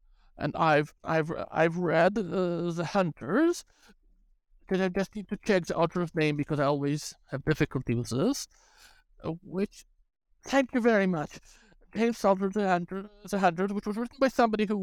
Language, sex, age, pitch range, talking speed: English, male, 60-79, 145-195 Hz, 165 wpm